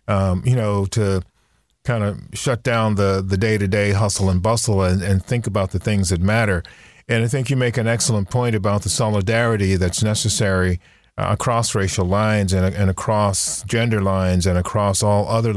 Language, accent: English, American